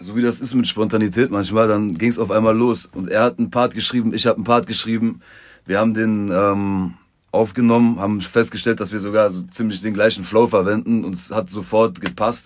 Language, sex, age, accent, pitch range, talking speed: German, male, 30-49, German, 95-115 Hz, 215 wpm